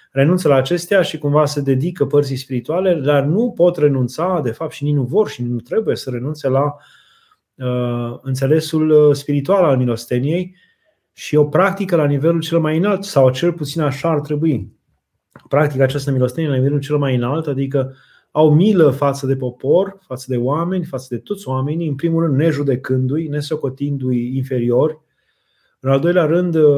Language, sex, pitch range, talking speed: Romanian, male, 130-170 Hz, 170 wpm